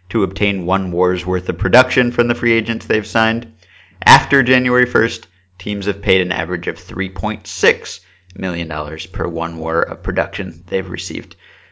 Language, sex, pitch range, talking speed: English, male, 90-110 Hz, 165 wpm